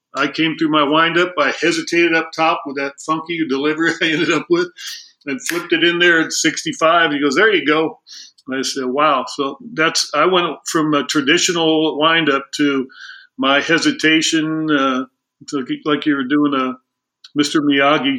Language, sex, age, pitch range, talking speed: English, male, 50-69, 140-165 Hz, 170 wpm